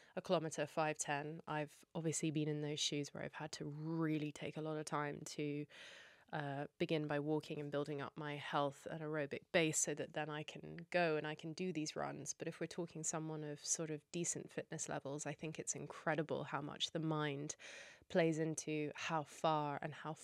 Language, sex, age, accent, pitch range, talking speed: English, female, 20-39, British, 150-170 Hz, 205 wpm